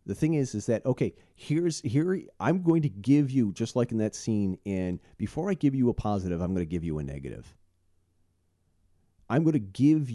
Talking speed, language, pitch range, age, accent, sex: 215 wpm, English, 90-130 Hz, 40-59, American, male